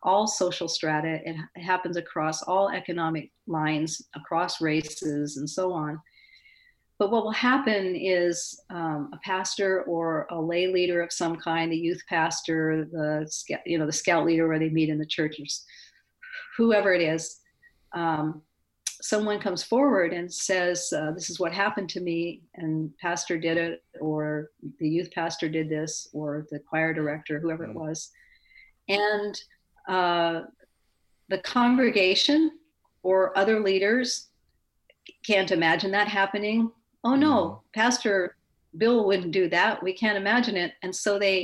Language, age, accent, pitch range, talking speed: English, 50-69, American, 165-215 Hz, 150 wpm